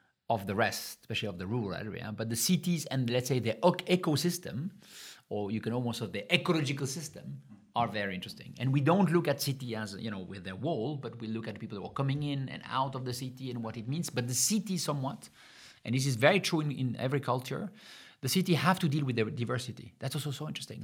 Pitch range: 120-155 Hz